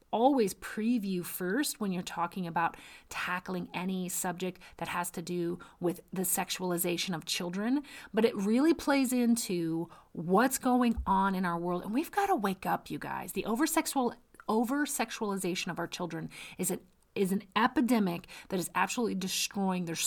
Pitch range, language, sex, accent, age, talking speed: 180-245 Hz, English, female, American, 30-49, 160 wpm